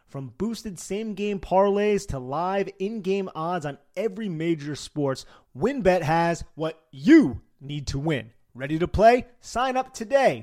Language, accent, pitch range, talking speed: English, American, 140-200 Hz, 145 wpm